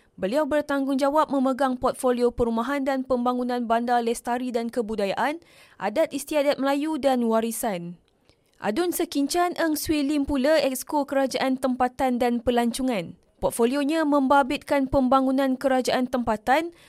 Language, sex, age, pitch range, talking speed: Malay, female, 20-39, 240-290 Hz, 115 wpm